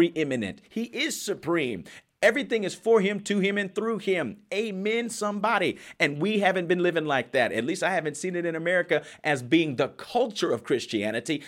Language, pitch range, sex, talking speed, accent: English, 155-215 Hz, male, 190 wpm, American